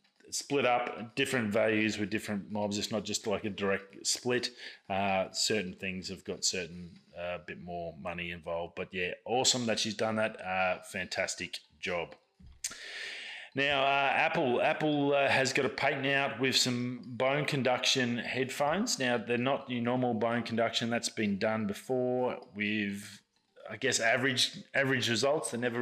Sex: male